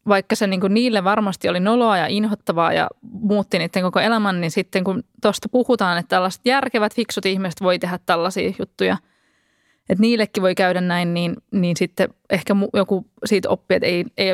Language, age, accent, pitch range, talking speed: Finnish, 20-39, native, 190-235 Hz, 180 wpm